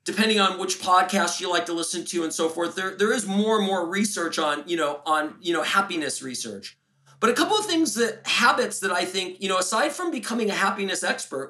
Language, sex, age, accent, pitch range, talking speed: English, male, 40-59, American, 160-225 Hz, 235 wpm